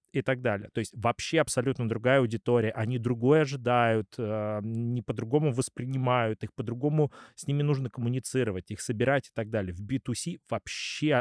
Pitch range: 110-140 Hz